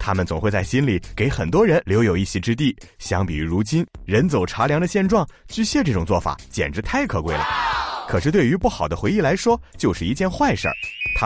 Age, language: 30-49, Chinese